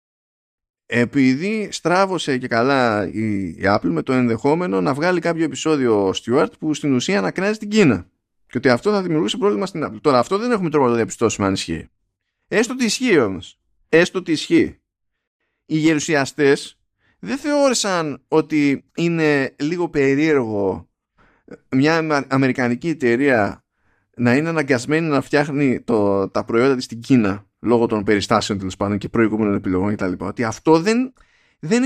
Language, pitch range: Greek, 115-175 Hz